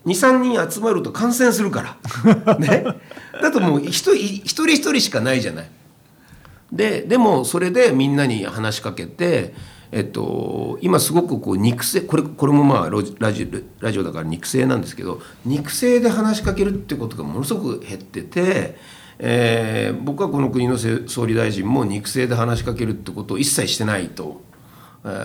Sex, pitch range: male, 110-165 Hz